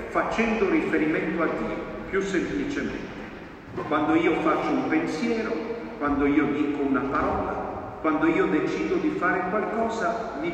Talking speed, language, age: 130 wpm, Italian, 50-69